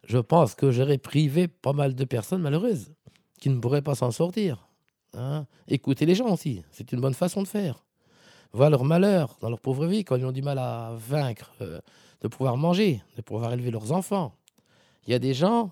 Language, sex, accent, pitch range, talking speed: French, male, French, 120-160 Hz, 210 wpm